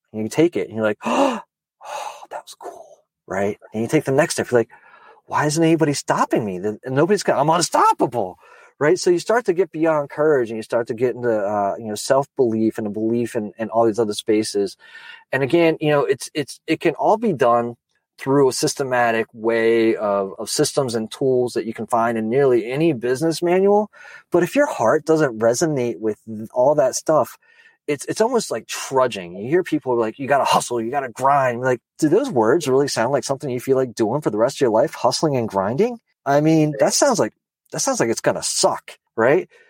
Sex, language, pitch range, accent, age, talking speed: male, English, 115-165 Hz, American, 30-49, 225 wpm